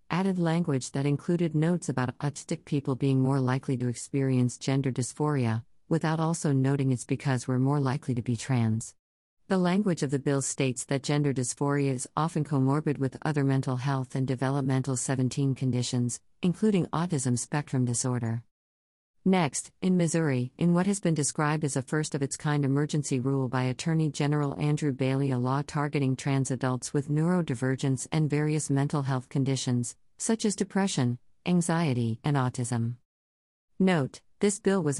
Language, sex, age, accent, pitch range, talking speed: English, female, 50-69, American, 130-155 Hz, 160 wpm